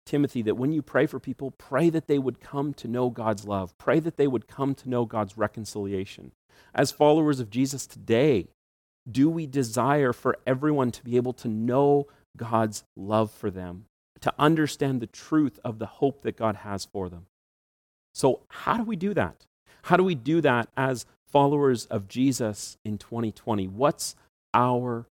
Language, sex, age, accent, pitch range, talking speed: English, male, 40-59, American, 105-140 Hz, 180 wpm